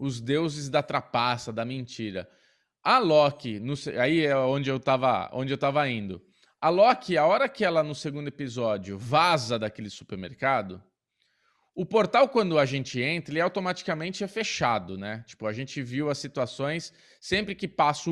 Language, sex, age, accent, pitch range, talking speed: Portuguese, male, 20-39, Brazilian, 130-180 Hz, 155 wpm